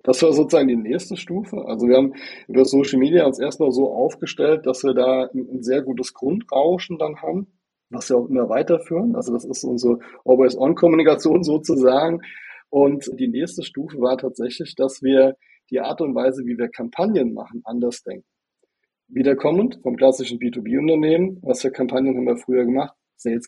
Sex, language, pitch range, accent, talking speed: male, German, 130-170 Hz, German, 170 wpm